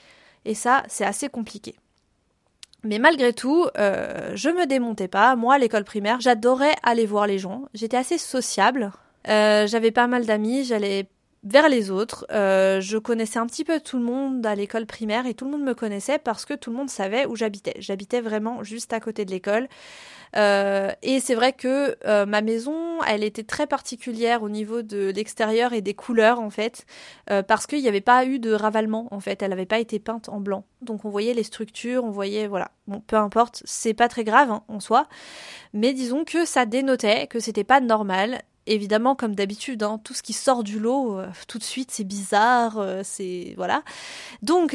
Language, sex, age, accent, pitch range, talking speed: French, female, 20-39, French, 210-255 Hz, 205 wpm